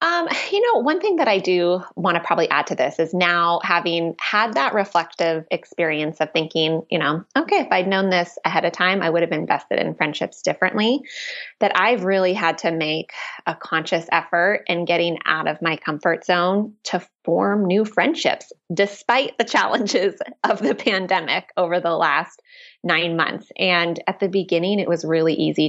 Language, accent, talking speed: English, American, 185 wpm